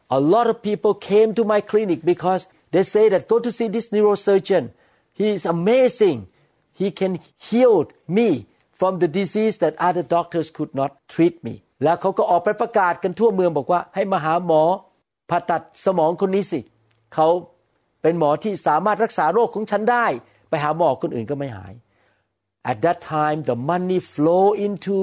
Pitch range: 140-195 Hz